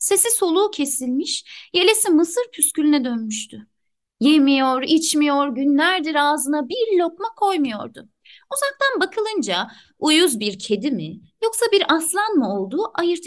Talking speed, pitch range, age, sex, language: 120 wpm, 220-315 Hz, 30-49, female, Turkish